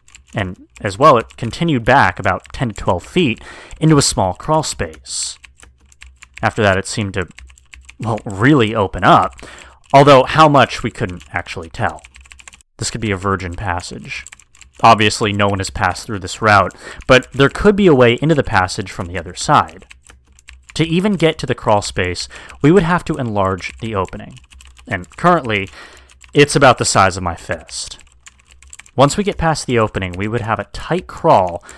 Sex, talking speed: male, 180 wpm